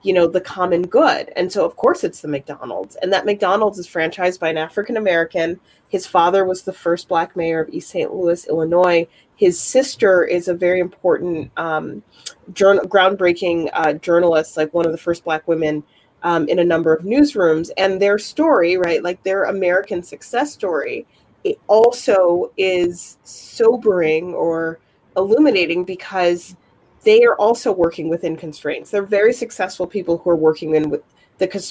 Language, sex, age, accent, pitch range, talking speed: English, female, 30-49, American, 170-210 Hz, 165 wpm